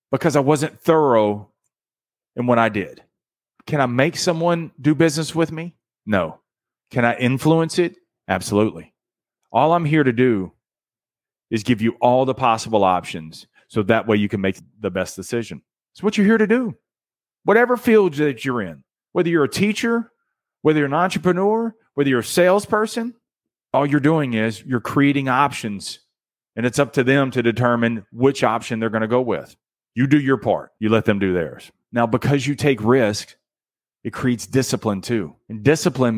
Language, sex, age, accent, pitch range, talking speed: English, male, 40-59, American, 115-150 Hz, 175 wpm